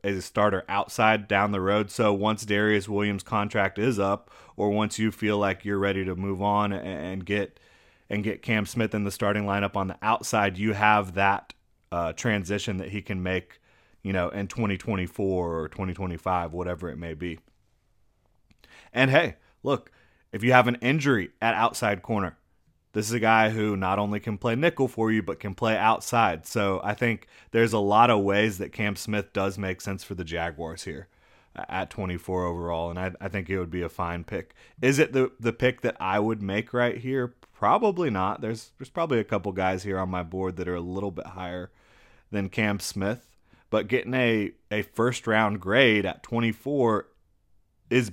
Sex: male